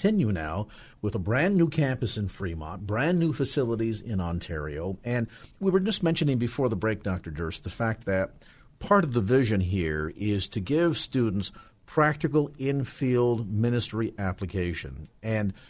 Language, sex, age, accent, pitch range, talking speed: English, male, 50-69, American, 100-155 Hz, 155 wpm